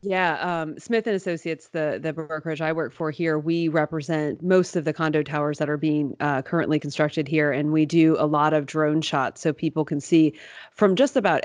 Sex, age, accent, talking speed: female, 30-49, American, 215 wpm